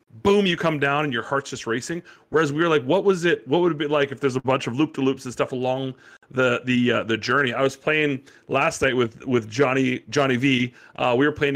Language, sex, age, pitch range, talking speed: English, male, 40-59, 120-150 Hz, 265 wpm